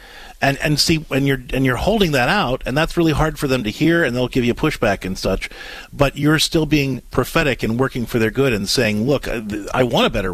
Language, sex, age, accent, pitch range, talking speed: English, male, 40-59, American, 115-155 Hz, 245 wpm